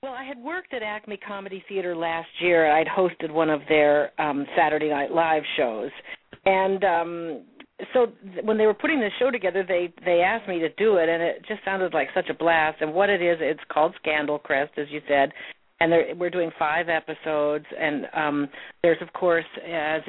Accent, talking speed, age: American, 205 wpm, 50-69